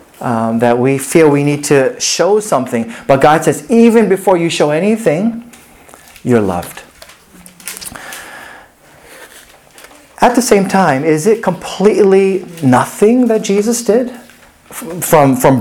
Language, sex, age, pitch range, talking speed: English, male, 30-49, 140-200 Hz, 125 wpm